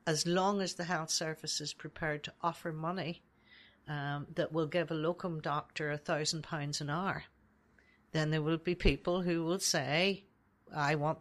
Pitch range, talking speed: 160-190 Hz, 165 wpm